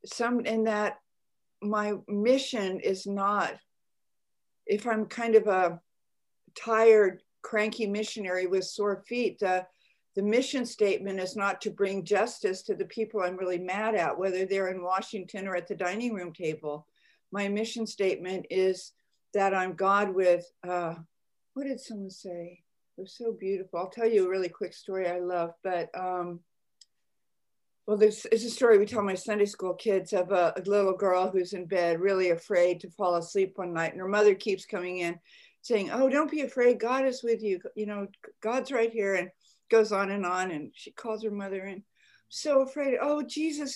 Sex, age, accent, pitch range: female, 60-79, American, 185-235 Hz